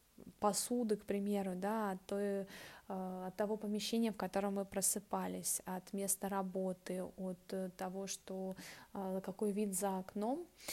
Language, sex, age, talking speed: Russian, female, 20-39, 130 wpm